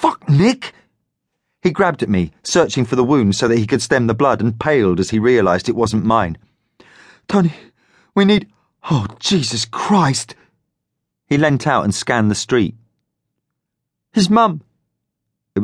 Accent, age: British, 40-59